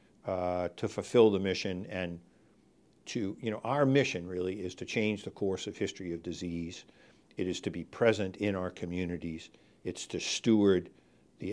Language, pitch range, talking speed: English, 90-105 Hz, 170 wpm